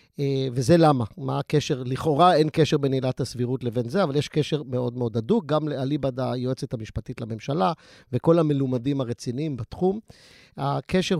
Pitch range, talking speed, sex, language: 130-155 Hz, 150 wpm, male, Hebrew